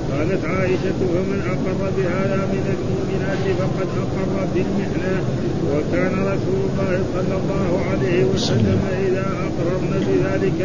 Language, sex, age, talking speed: Arabic, male, 50-69, 115 wpm